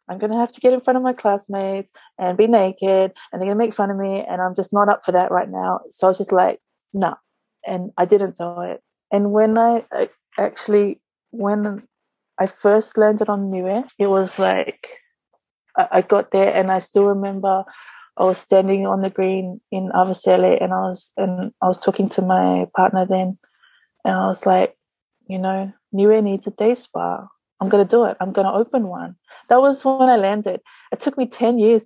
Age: 20-39